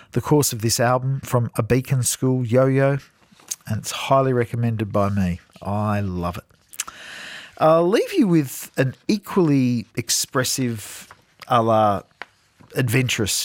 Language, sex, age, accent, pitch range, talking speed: English, male, 50-69, Australian, 100-130 Hz, 130 wpm